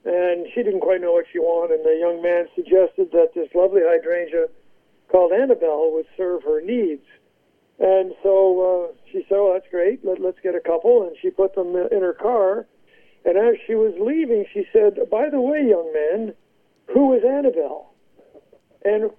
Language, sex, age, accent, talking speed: English, male, 60-79, American, 180 wpm